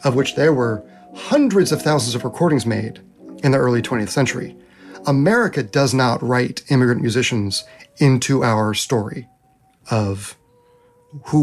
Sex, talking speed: male, 135 wpm